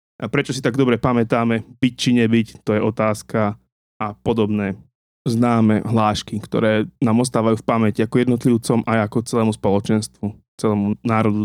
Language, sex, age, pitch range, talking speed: Slovak, male, 20-39, 110-135 Hz, 150 wpm